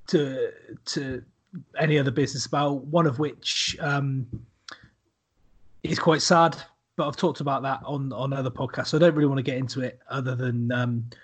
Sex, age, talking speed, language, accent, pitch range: male, 30-49, 175 wpm, English, British, 120-150 Hz